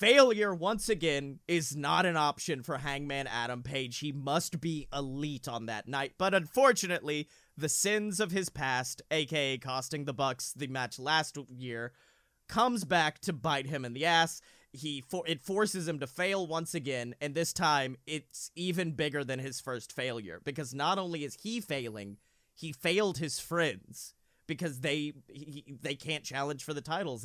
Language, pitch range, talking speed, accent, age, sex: English, 135-175 Hz, 175 wpm, American, 30-49, male